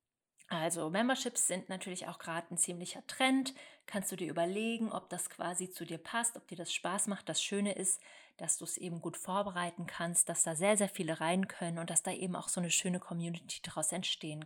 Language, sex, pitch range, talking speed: German, female, 170-205 Hz, 215 wpm